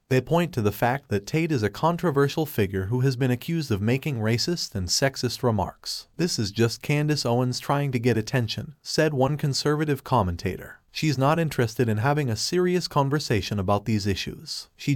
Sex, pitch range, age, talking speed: male, 110-150 Hz, 30-49, 185 wpm